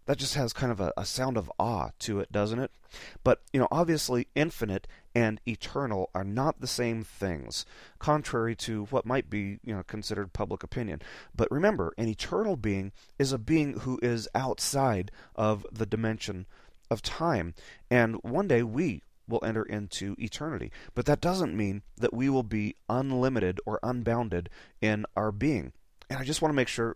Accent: American